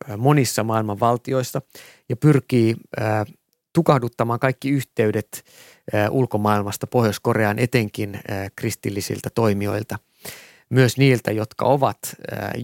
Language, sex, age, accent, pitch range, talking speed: Finnish, male, 30-49, native, 105-125 Hz, 95 wpm